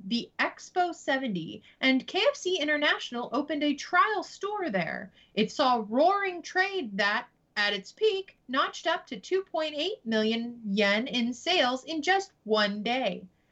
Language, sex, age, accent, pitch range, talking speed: English, female, 30-49, American, 220-335 Hz, 140 wpm